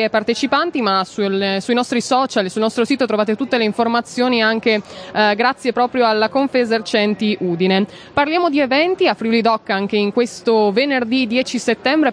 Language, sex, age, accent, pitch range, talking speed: Italian, female, 20-39, native, 220-270 Hz, 165 wpm